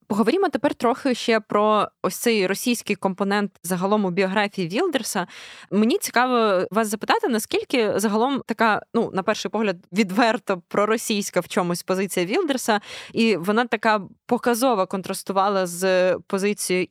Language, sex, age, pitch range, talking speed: Ukrainian, female, 20-39, 190-225 Hz, 130 wpm